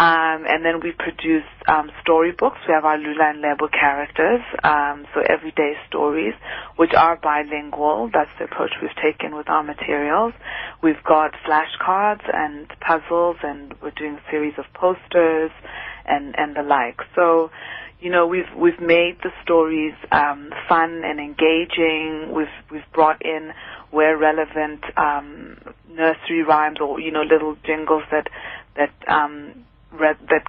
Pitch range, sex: 150-170 Hz, female